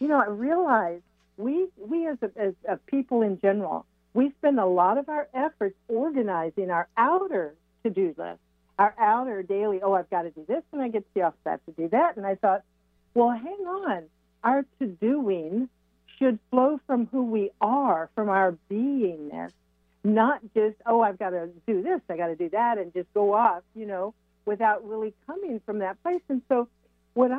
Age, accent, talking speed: 60-79, American, 200 wpm